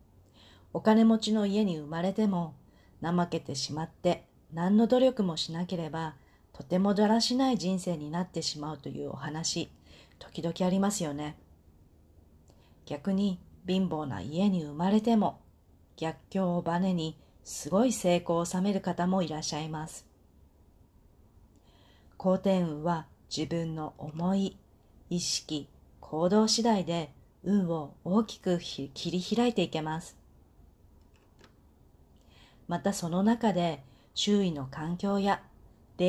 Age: 40-59